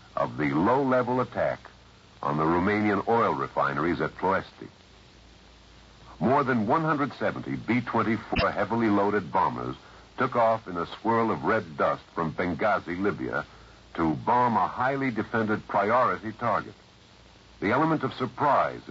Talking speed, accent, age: 135 wpm, American, 60-79